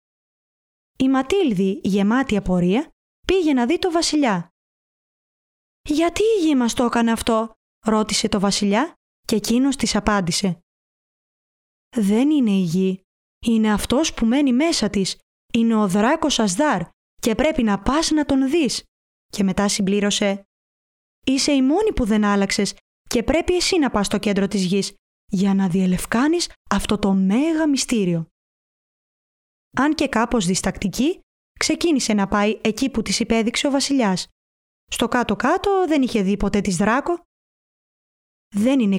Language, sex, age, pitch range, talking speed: Greek, female, 20-39, 200-285 Hz, 140 wpm